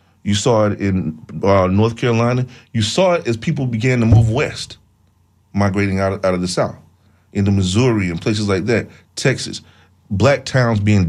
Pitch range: 90-110 Hz